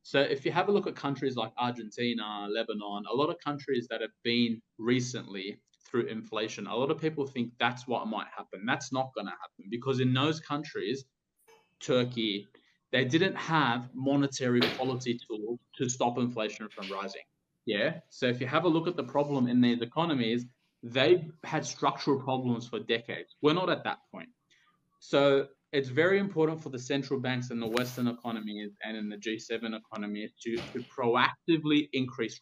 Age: 20-39